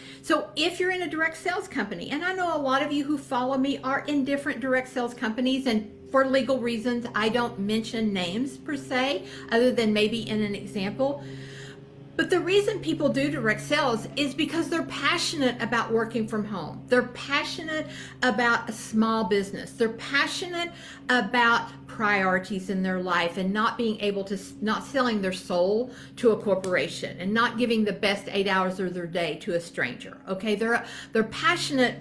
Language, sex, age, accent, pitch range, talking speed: English, female, 50-69, American, 190-275 Hz, 180 wpm